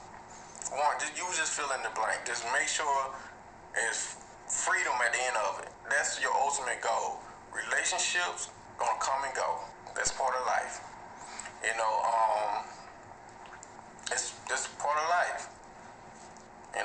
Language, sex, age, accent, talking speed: English, male, 20-39, American, 135 wpm